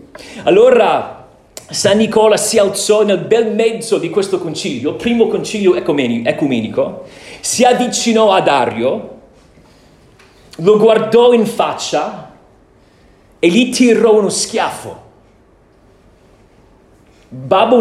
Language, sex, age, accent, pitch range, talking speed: Italian, male, 40-59, native, 175-240 Hz, 100 wpm